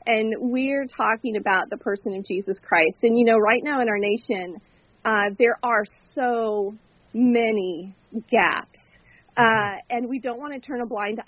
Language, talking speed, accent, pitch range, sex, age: English, 170 wpm, American, 200-235 Hz, female, 40-59